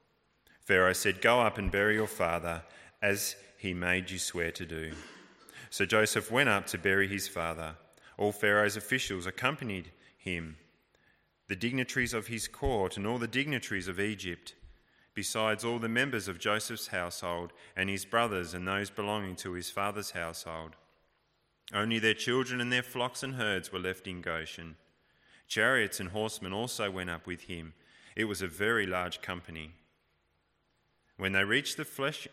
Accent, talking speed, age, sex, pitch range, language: Australian, 160 wpm, 30-49, male, 85-110 Hz, English